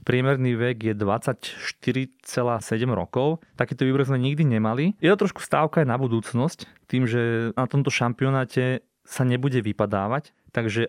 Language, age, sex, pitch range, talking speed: Slovak, 20-39, male, 120-145 Hz, 145 wpm